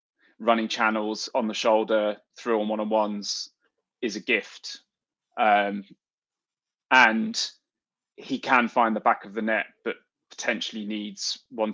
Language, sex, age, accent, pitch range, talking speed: English, male, 20-39, British, 110-125 Hz, 135 wpm